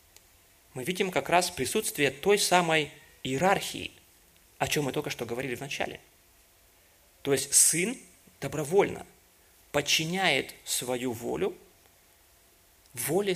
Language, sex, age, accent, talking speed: Russian, male, 20-39, native, 105 wpm